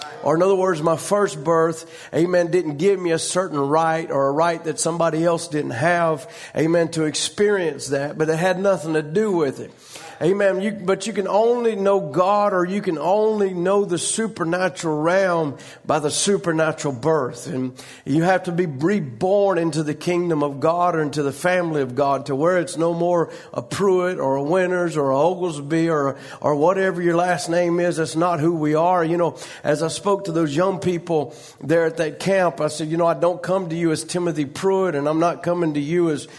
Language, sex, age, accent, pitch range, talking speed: English, male, 50-69, American, 155-190 Hz, 210 wpm